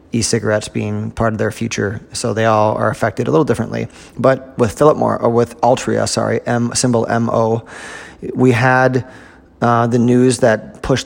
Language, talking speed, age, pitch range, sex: English, 175 wpm, 30-49, 105-120 Hz, male